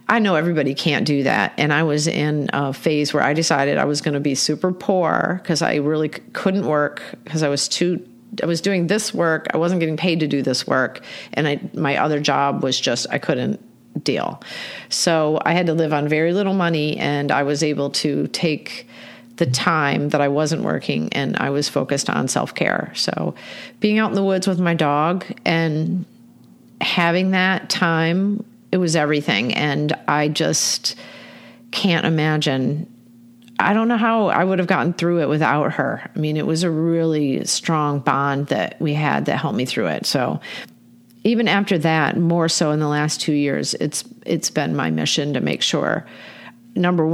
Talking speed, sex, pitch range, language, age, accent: 190 wpm, female, 145-180 Hz, English, 40-59, American